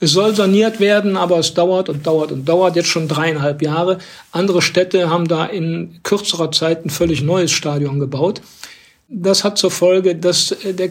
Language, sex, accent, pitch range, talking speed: German, male, German, 165-190 Hz, 180 wpm